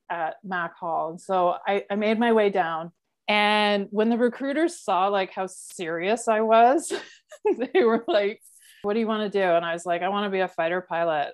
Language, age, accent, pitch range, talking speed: English, 30-49, American, 175-220 Hz, 215 wpm